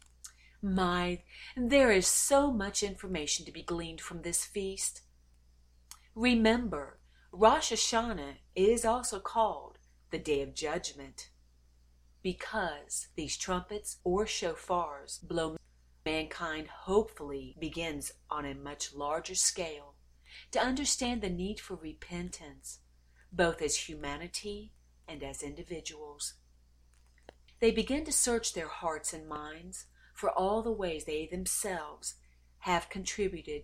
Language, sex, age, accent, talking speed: English, female, 40-59, American, 115 wpm